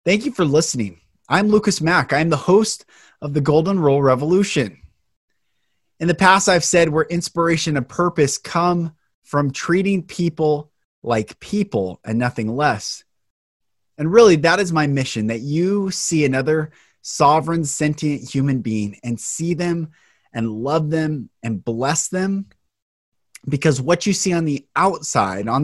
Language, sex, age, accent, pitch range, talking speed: English, male, 20-39, American, 120-170 Hz, 150 wpm